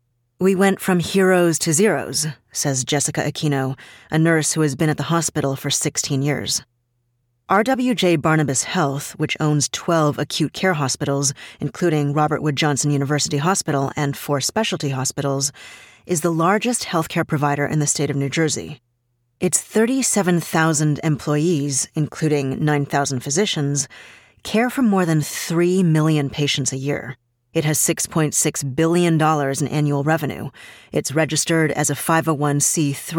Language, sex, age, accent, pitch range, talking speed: English, female, 30-49, American, 140-165 Hz, 140 wpm